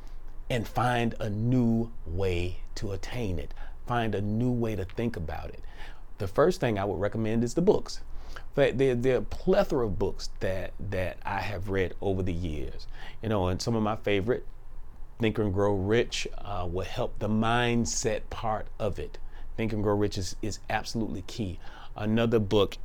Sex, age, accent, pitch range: male, 40-59, American, 95-120 Hz